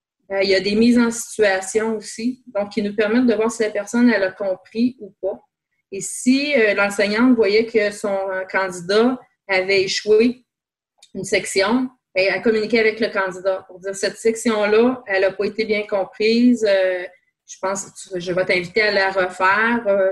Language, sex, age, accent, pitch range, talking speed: French, female, 30-49, Canadian, 190-220 Hz, 190 wpm